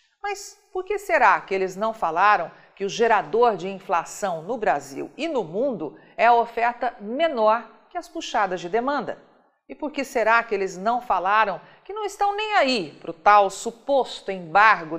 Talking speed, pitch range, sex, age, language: 180 wpm, 185-255 Hz, female, 50-69, Portuguese